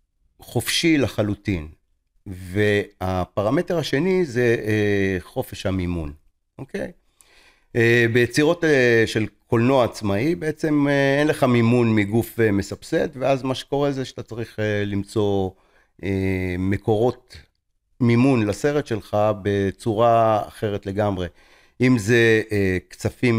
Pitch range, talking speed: 95-125 Hz, 110 wpm